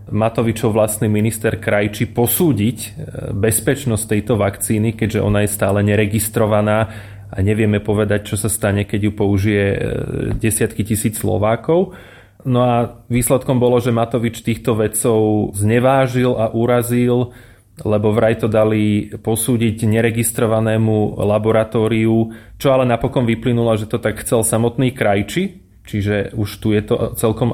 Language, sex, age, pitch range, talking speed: Slovak, male, 30-49, 110-125 Hz, 130 wpm